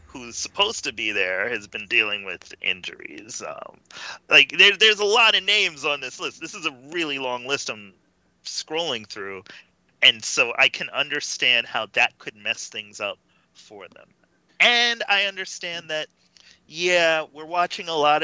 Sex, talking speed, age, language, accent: male, 170 wpm, 30-49, English, American